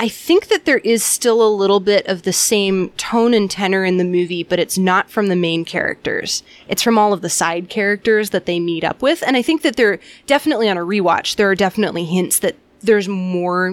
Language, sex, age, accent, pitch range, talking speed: English, female, 20-39, American, 175-210 Hz, 230 wpm